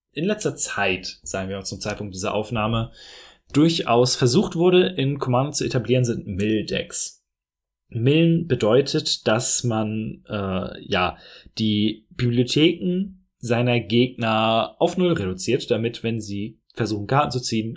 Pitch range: 105-145 Hz